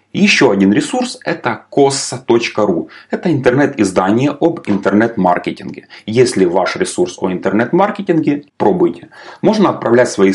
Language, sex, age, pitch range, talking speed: Ukrainian, male, 30-49, 105-170 Hz, 105 wpm